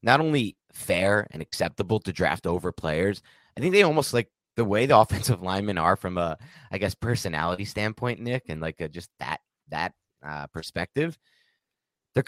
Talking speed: 175 wpm